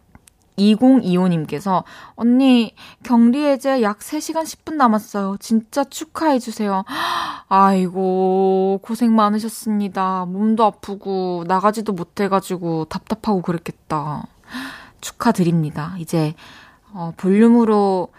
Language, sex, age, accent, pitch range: Korean, female, 20-39, native, 180-245 Hz